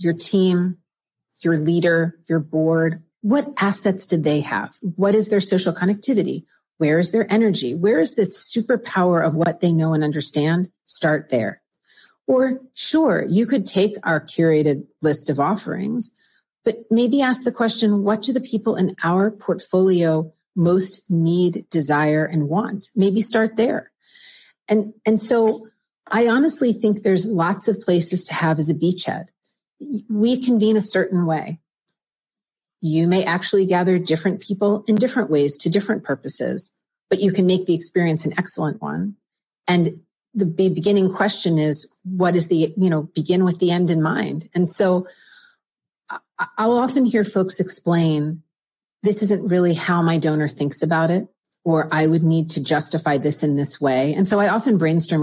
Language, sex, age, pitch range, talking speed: English, female, 40-59, 160-210 Hz, 165 wpm